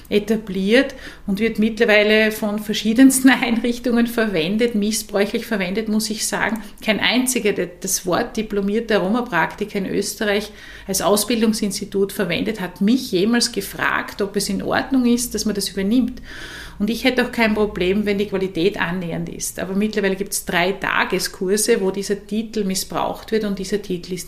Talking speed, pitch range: 160 wpm, 200-240 Hz